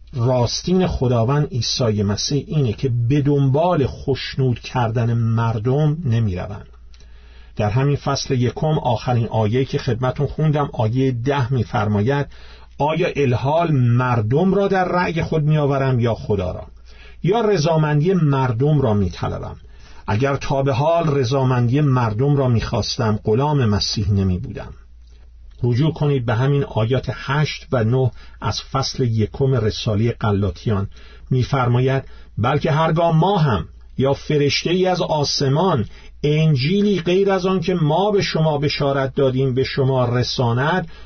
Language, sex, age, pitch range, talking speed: Persian, male, 50-69, 115-150 Hz, 130 wpm